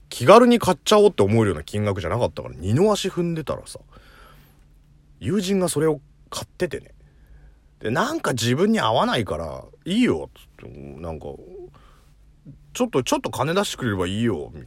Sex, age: male, 40-59